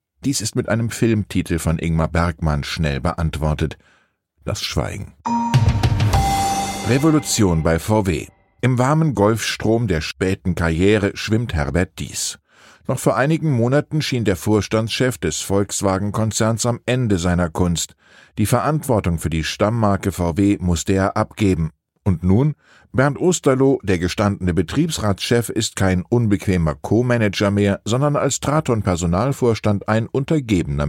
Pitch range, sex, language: 90-115 Hz, male, German